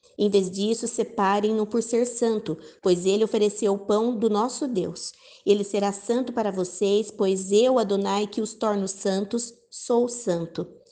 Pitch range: 195-230 Hz